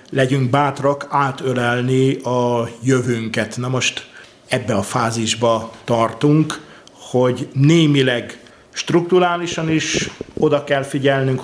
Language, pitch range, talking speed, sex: Hungarian, 125-140 Hz, 95 wpm, male